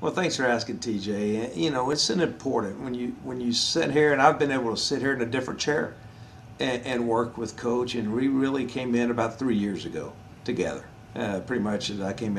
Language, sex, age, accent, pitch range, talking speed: English, male, 50-69, American, 105-125 Hz, 235 wpm